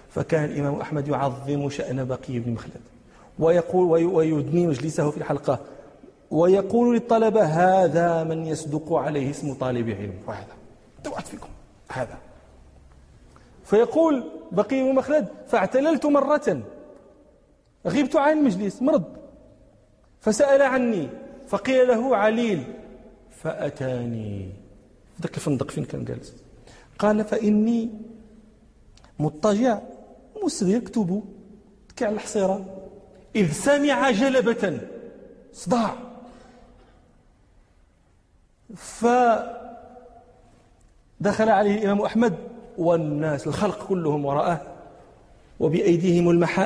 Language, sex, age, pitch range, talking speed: Arabic, male, 40-59, 145-230 Hz, 90 wpm